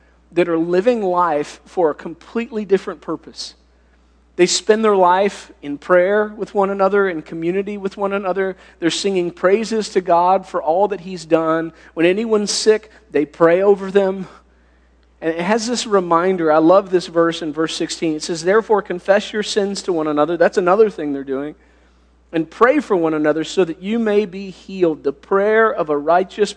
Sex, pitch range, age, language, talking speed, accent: male, 130-190 Hz, 40-59, English, 185 wpm, American